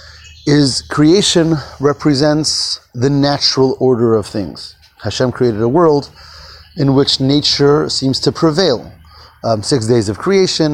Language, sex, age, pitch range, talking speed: English, male, 30-49, 115-150 Hz, 130 wpm